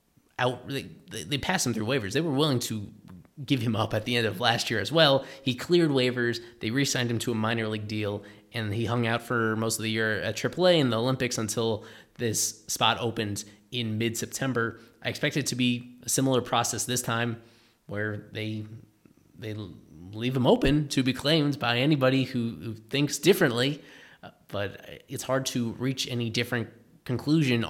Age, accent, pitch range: 20-39, American, 110-130 Hz